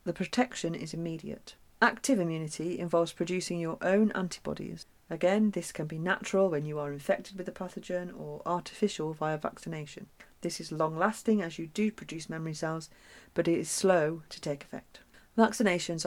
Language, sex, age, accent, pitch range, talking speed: English, female, 40-59, British, 160-195 Hz, 165 wpm